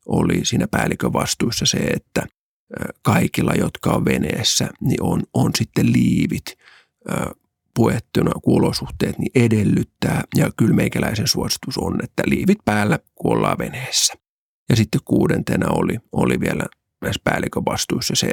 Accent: native